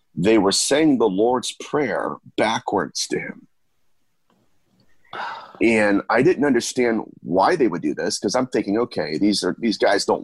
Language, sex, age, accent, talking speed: English, male, 40-59, American, 160 wpm